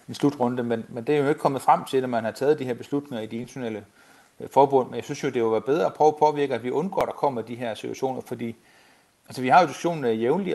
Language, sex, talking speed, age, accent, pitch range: Danish, male, 285 wpm, 30-49, native, 120-150 Hz